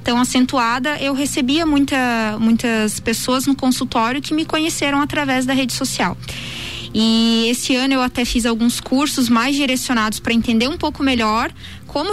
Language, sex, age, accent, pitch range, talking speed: Portuguese, female, 20-39, Brazilian, 230-290 Hz, 160 wpm